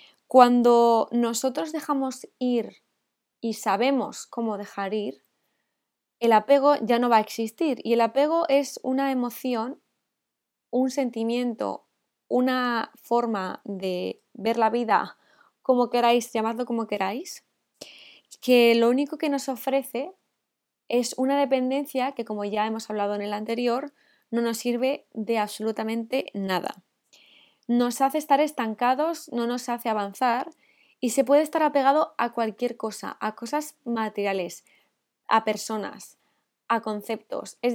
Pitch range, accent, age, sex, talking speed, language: 225-270 Hz, Spanish, 20-39, female, 130 wpm, Spanish